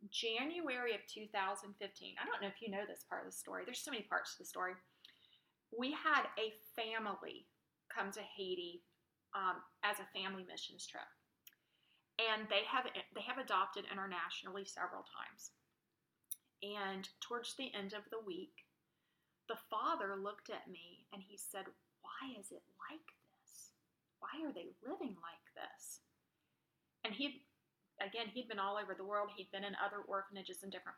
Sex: female